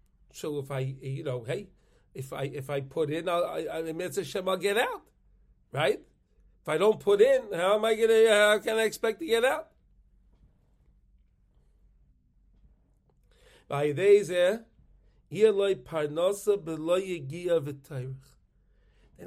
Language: English